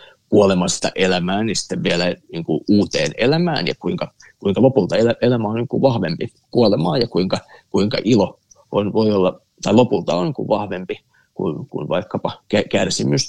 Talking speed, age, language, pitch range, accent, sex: 160 wpm, 30-49, Finnish, 105-130 Hz, native, male